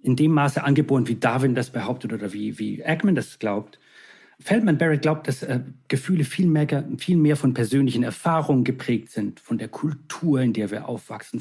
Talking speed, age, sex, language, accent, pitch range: 190 wpm, 40-59, male, German, German, 125-160 Hz